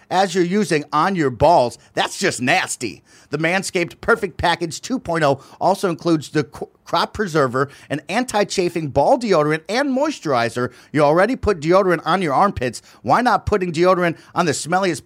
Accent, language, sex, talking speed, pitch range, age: American, English, male, 155 wpm, 145-195 Hz, 40-59